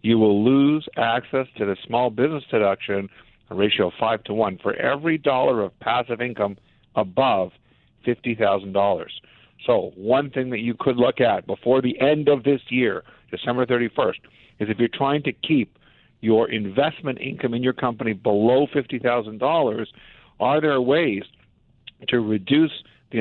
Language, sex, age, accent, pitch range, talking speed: English, male, 50-69, American, 110-130 Hz, 155 wpm